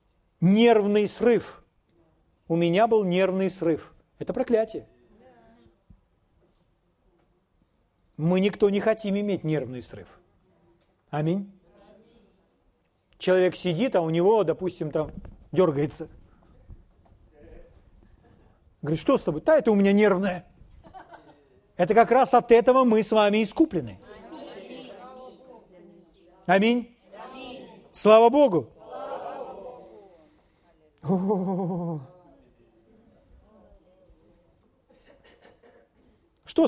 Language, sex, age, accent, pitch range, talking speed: Russian, male, 40-59, native, 160-220 Hz, 75 wpm